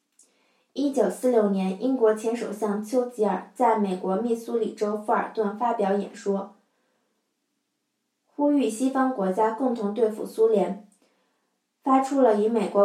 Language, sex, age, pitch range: Chinese, female, 20-39, 200-250 Hz